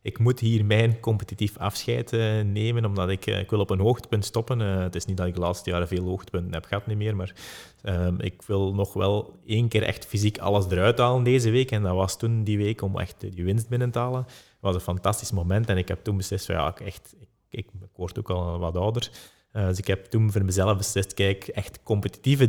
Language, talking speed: English, 250 wpm